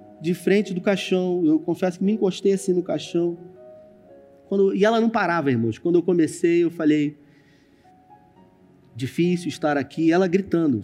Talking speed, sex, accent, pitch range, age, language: 155 wpm, male, Brazilian, 125-185 Hz, 30-49, Portuguese